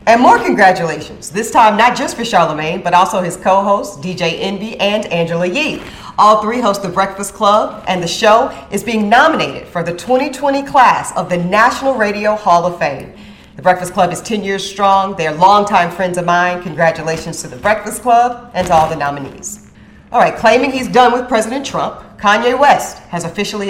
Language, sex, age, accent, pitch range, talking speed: English, female, 40-59, American, 160-205 Hz, 190 wpm